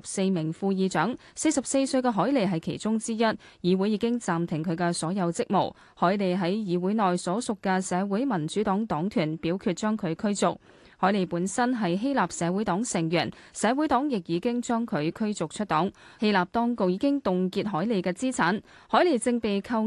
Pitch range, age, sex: 175-230 Hz, 20-39, female